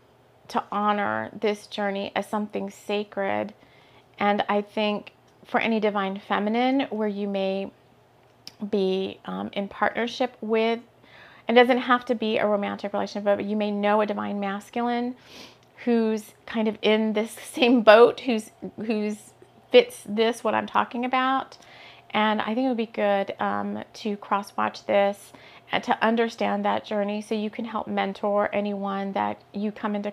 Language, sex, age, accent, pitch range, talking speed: English, female, 30-49, American, 190-220 Hz, 155 wpm